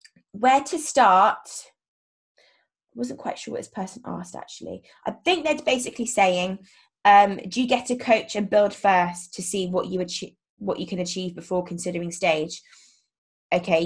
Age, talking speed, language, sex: 20-39, 170 wpm, English, female